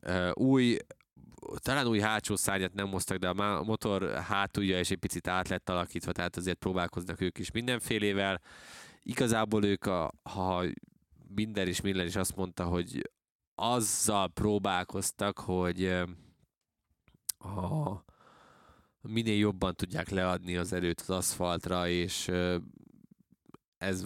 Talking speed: 120 wpm